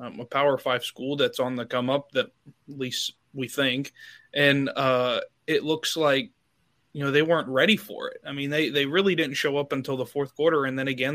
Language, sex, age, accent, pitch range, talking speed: English, male, 20-39, American, 135-160 Hz, 225 wpm